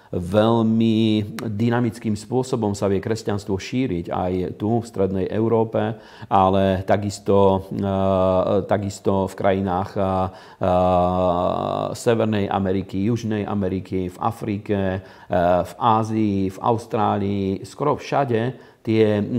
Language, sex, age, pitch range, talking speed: Slovak, male, 40-59, 100-115 Hz, 95 wpm